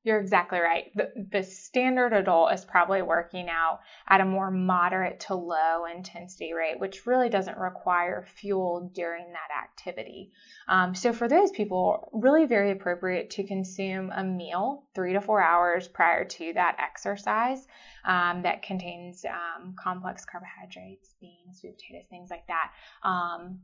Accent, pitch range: American, 180-200 Hz